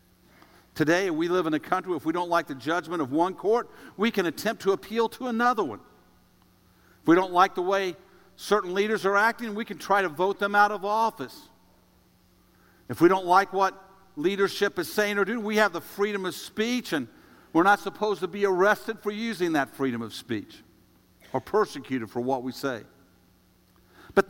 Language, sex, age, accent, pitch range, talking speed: English, male, 50-69, American, 135-205 Hz, 195 wpm